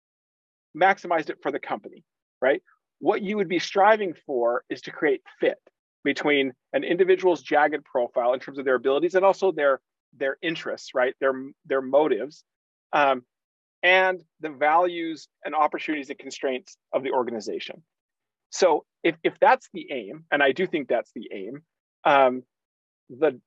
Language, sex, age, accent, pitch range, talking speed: English, male, 40-59, American, 135-190 Hz, 155 wpm